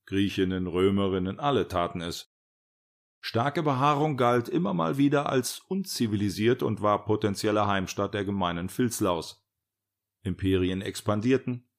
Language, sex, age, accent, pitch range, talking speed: German, male, 40-59, German, 90-110 Hz, 110 wpm